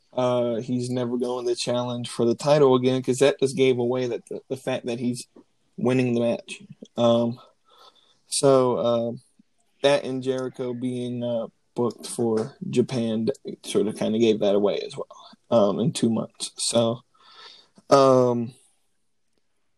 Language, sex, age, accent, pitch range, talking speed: English, male, 20-39, American, 120-140 Hz, 150 wpm